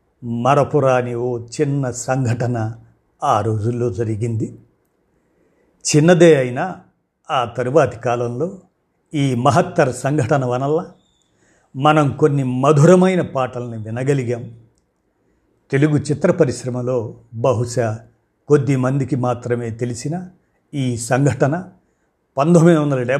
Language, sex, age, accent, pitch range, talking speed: Telugu, male, 50-69, native, 120-150 Hz, 85 wpm